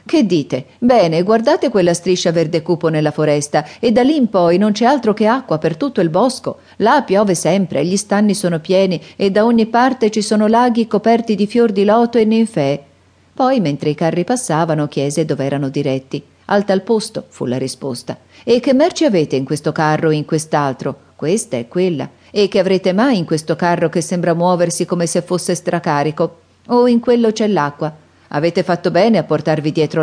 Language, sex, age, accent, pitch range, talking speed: Italian, female, 40-59, native, 155-205 Hz, 200 wpm